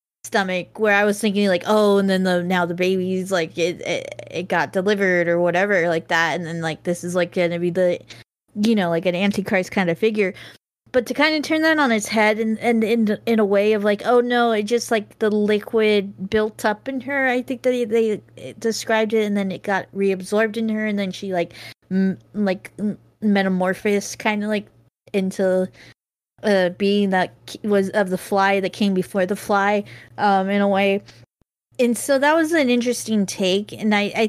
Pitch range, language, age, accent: 180-215 Hz, English, 20-39, American